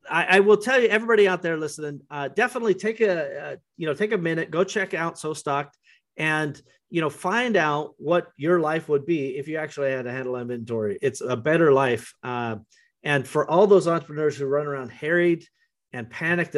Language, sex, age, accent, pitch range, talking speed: English, male, 30-49, American, 130-185 Hz, 205 wpm